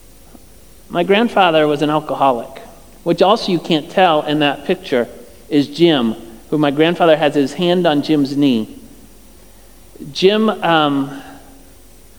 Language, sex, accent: English, male, American